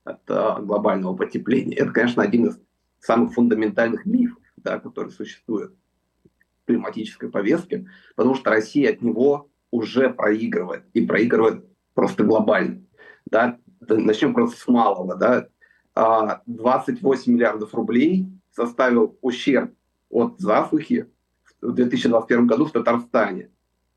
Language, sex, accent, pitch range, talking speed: Russian, male, native, 105-135 Hz, 105 wpm